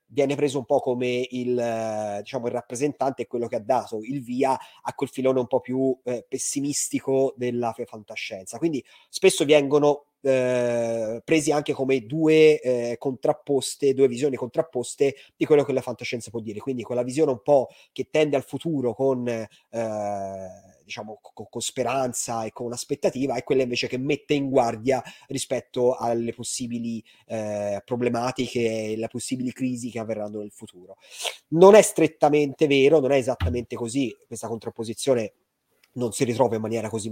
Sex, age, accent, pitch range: male, 30-49, native, 115-135 Hz